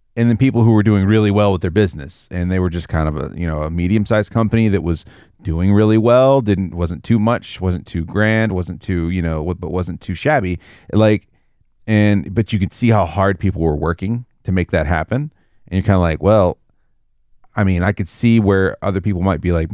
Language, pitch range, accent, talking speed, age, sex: English, 90-110 Hz, American, 230 wpm, 30-49, male